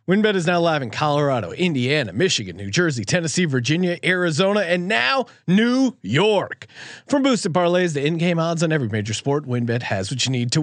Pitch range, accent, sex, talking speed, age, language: 130-195 Hz, American, male, 185 wpm, 30-49, English